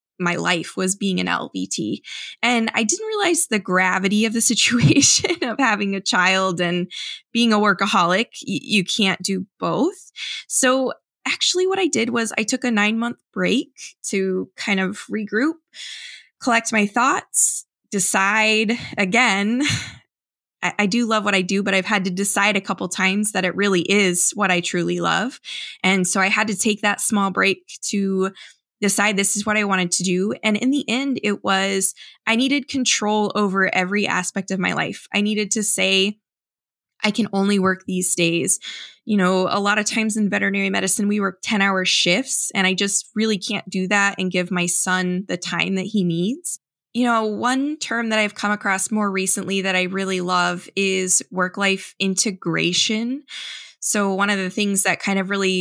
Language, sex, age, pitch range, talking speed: English, female, 20-39, 190-225 Hz, 180 wpm